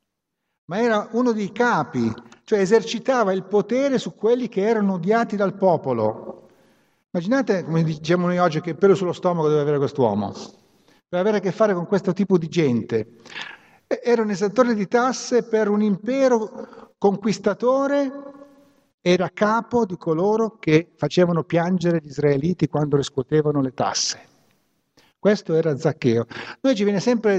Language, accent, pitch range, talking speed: Italian, native, 155-215 Hz, 150 wpm